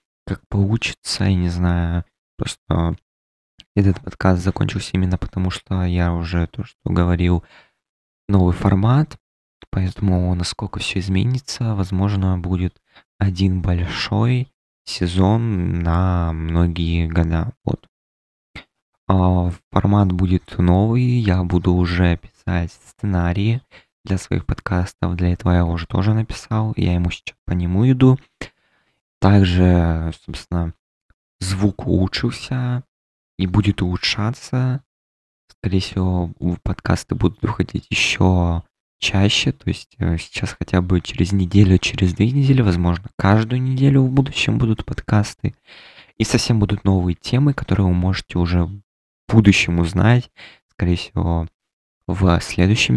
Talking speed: 115 wpm